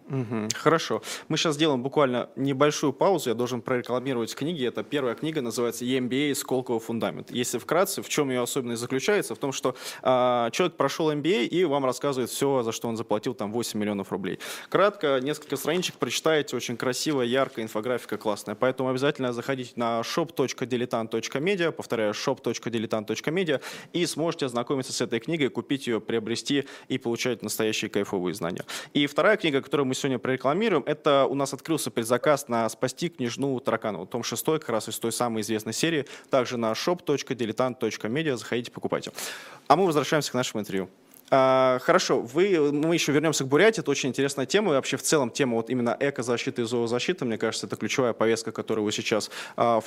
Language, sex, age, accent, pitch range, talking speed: Russian, male, 20-39, native, 115-145 Hz, 170 wpm